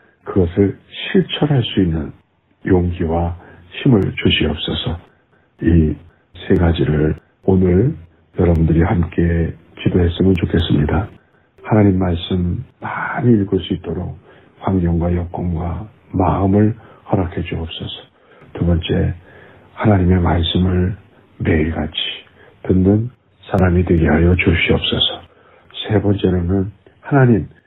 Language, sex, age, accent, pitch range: Korean, male, 60-79, native, 85-105 Hz